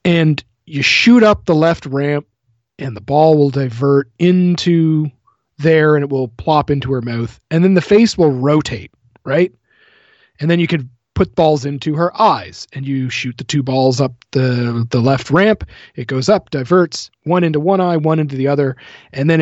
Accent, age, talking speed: American, 30-49, 190 wpm